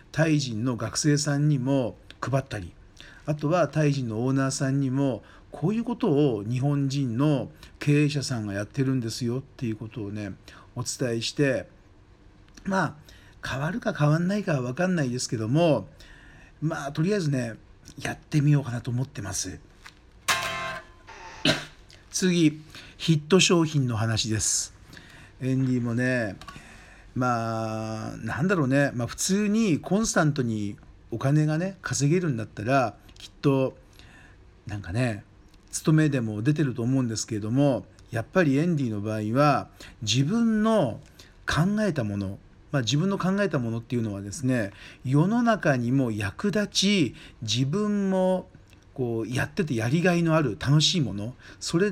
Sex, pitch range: male, 110-150 Hz